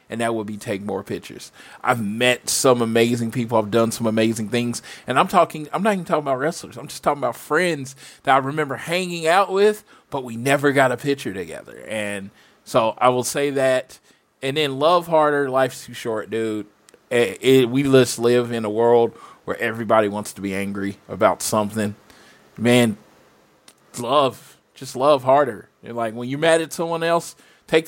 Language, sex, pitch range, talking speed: English, male, 115-140 Hz, 190 wpm